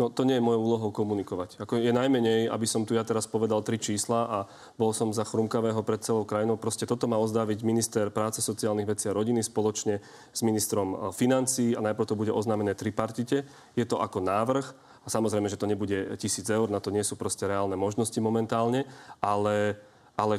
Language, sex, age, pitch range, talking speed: Slovak, male, 30-49, 110-135 Hz, 200 wpm